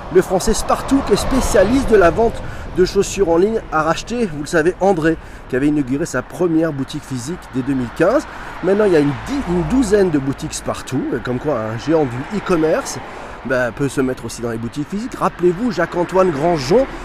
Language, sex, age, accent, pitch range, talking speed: French, male, 40-59, French, 135-185 Hz, 200 wpm